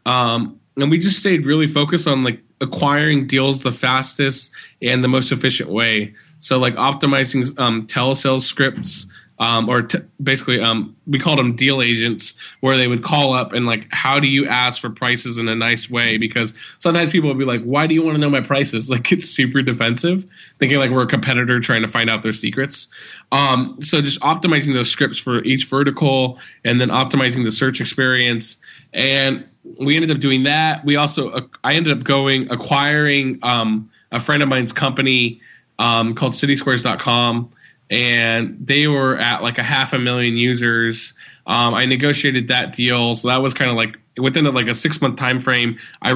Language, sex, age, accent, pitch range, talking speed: English, male, 20-39, American, 120-140 Hz, 190 wpm